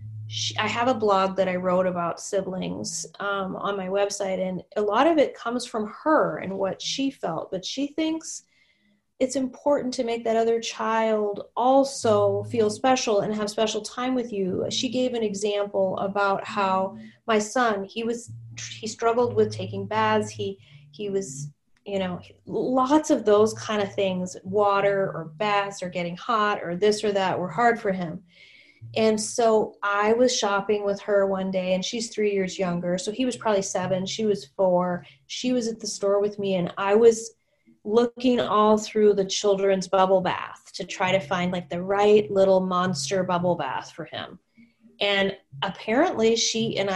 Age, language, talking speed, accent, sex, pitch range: 30-49, English, 180 wpm, American, female, 185-230 Hz